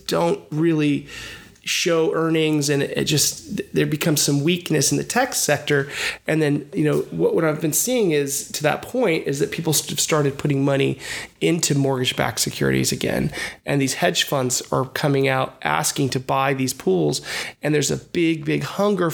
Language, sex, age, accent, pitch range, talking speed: English, male, 30-49, American, 135-165 Hz, 175 wpm